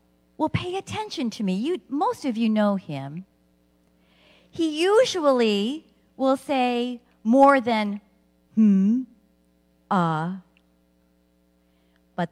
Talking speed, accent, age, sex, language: 95 wpm, American, 50-69, female, English